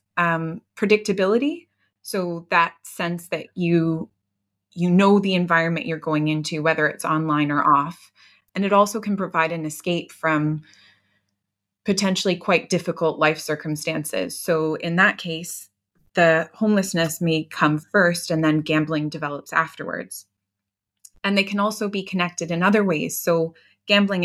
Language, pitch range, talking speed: English, 155-180 Hz, 140 wpm